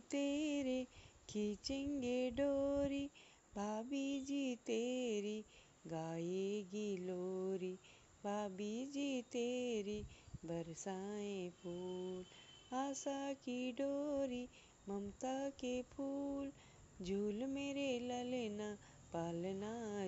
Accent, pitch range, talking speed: native, 195-275 Hz, 65 wpm